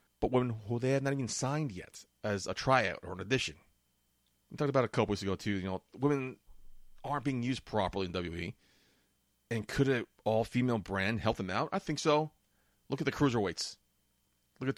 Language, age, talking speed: English, 30-49, 205 wpm